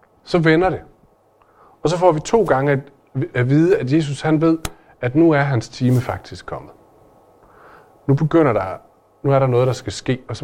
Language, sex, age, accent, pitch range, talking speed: Danish, male, 40-59, native, 115-160 Hz, 195 wpm